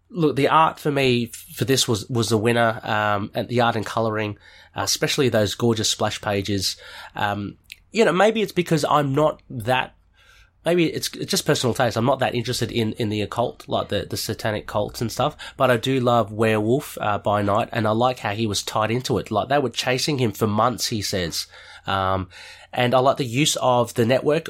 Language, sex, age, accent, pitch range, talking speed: English, male, 30-49, Australian, 110-145 Hz, 215 wpm